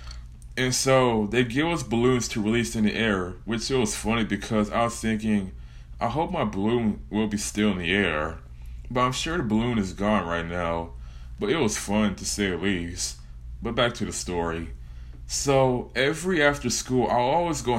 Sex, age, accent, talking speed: male, 20-39, American, 195 wpm